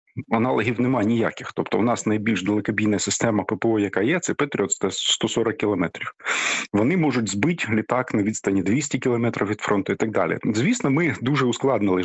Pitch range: 110-145 Hz